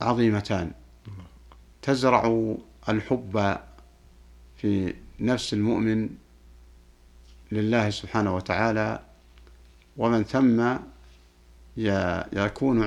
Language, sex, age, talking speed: Arabic, male, 50-69, 55 wpm